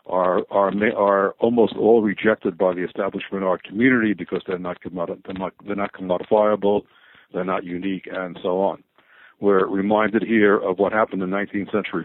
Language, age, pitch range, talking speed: English, 60-79, 90-105 Hz, 170 wpm